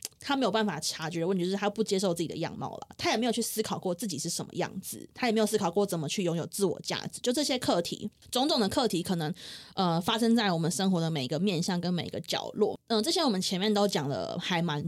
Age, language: 20-39, Chinese